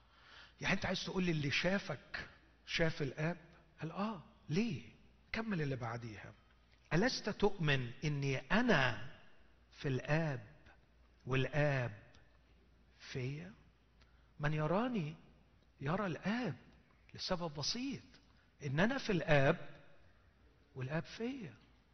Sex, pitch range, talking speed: male, 145-200 Hz, 95 wpm